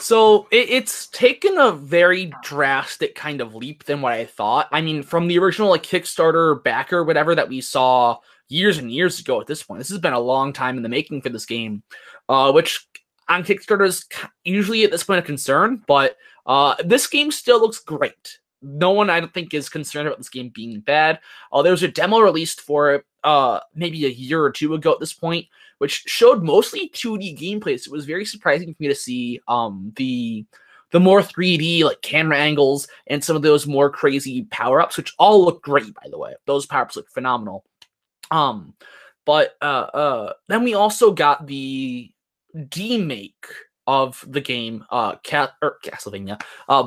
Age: 20-39